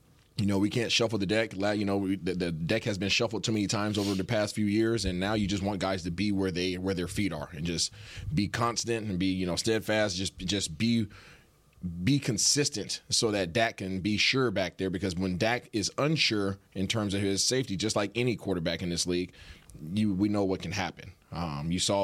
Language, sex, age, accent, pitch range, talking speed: English, male, 30-49, American, 95-110 Hz, 230 wpm